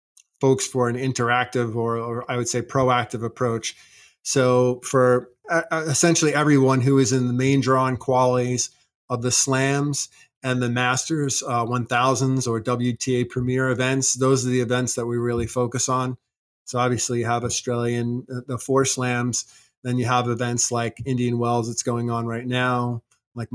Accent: American